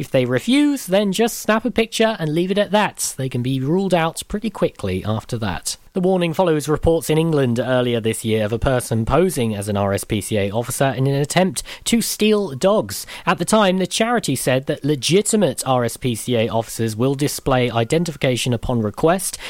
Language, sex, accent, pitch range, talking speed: English, male, British, 120-170 Hz, 185 wpm